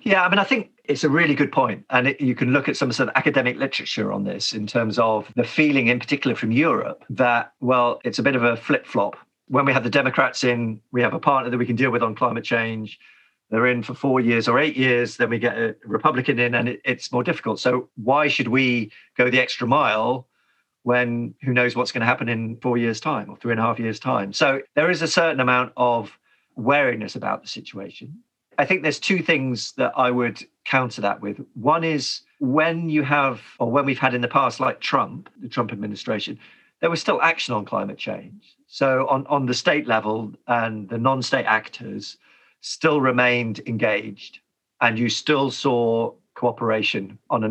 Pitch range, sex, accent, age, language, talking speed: 115-135 Hz, male, British, 40-59, English, 210 wpm